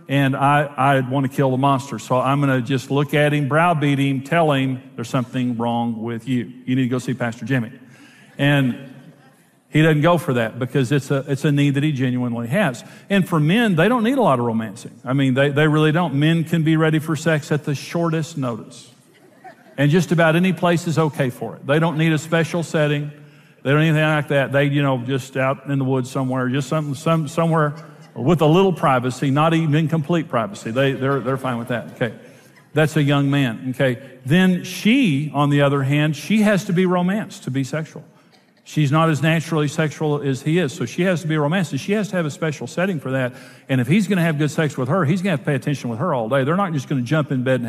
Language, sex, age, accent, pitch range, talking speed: English, male, 50-69, American, 135-165 Hz, 240 wpm